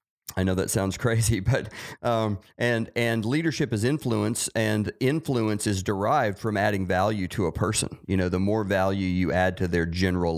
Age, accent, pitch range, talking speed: 40-59, American, 90-120 Hz, 185 wpm